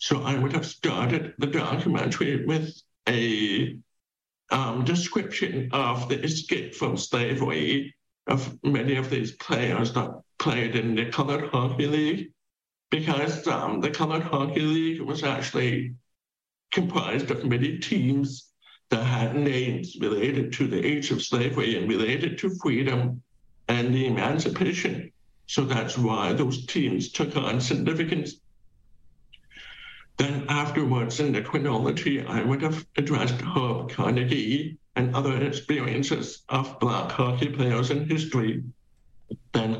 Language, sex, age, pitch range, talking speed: English, male, 60-79, 125-150 Hz, 130 wpm